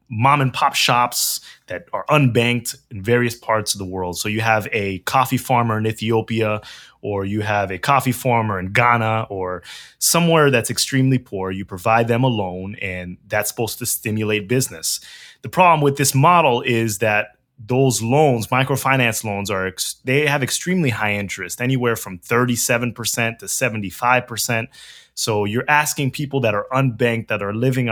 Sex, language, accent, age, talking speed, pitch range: male, English, American, 20-39, 165 wpm, 110-135 Hz